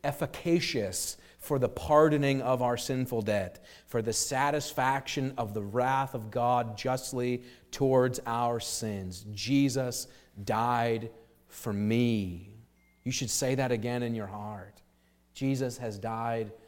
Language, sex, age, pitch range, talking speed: English, male, 40-59, 105-135 Hz, 125 wpm